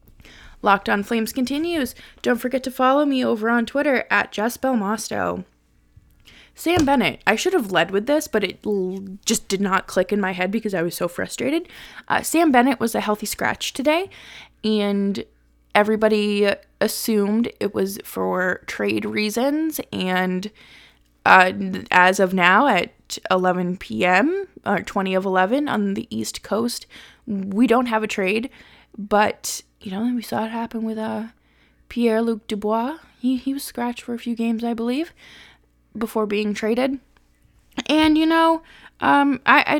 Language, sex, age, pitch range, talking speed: English, female, 20-39, 195-260 Hz, 155 wpm